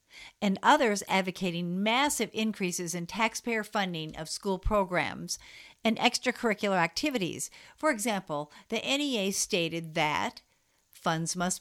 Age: 60-79